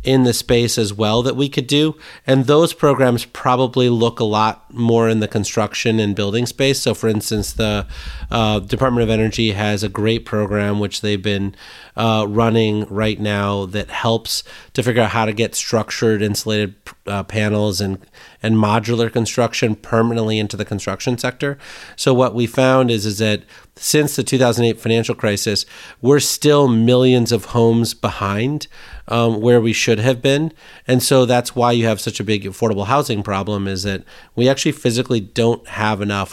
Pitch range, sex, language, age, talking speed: 105-125 Hz, male, English, 30-49, 175 wpm